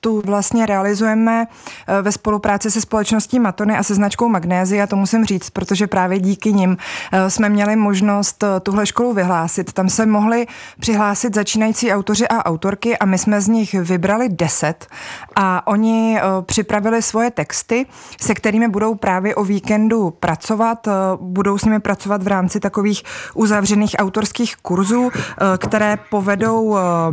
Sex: female